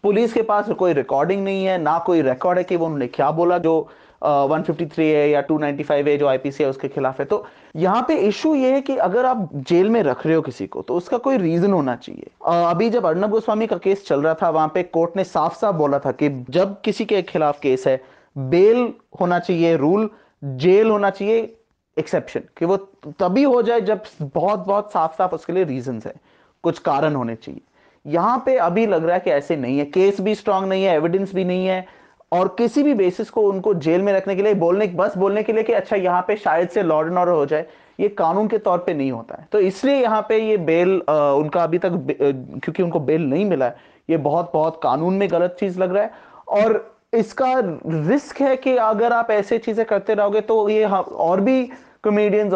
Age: 30-49